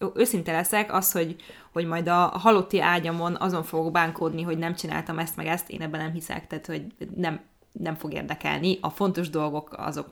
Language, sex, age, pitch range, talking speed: Hungarian, female, 20-39, 165-205 Hz, 190 wpm